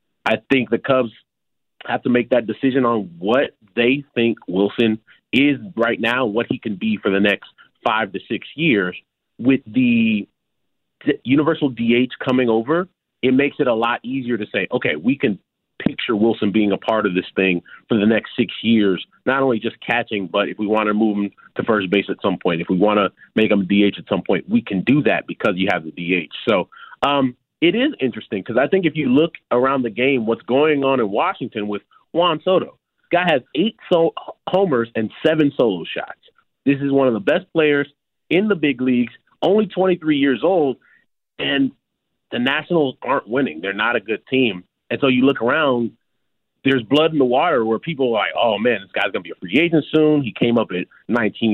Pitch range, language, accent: 110-145 Hz, English, American